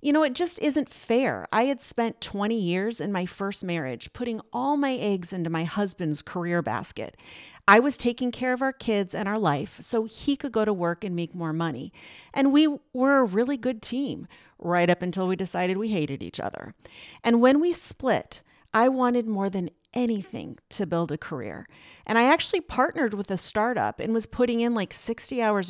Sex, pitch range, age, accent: female, 170-235 Hz, 40-59, American